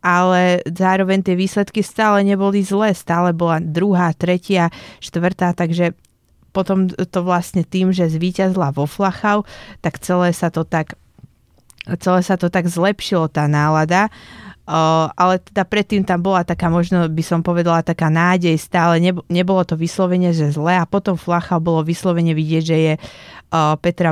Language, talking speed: Slovak, 150 wpm